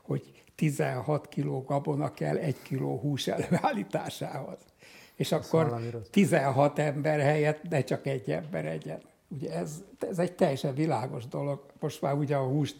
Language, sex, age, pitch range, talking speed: Hungarian, male, 60-79, 140-160 Hz, 145 wpm